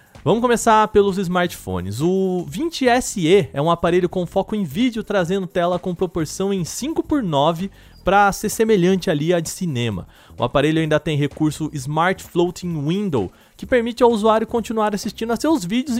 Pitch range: 150-210 Hz